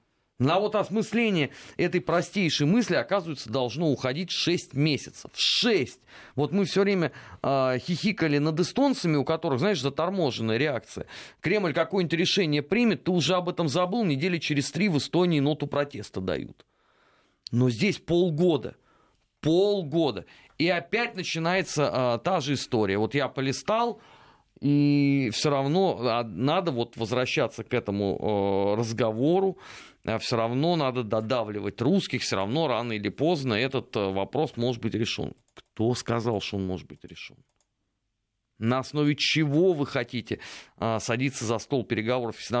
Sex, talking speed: male, 140 wpm